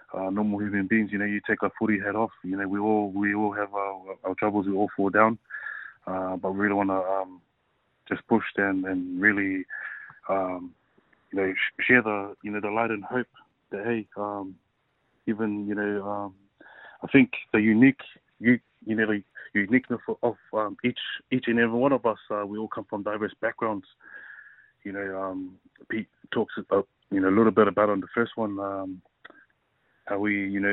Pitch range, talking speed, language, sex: 95-105 Hz, 200 wpm, English, male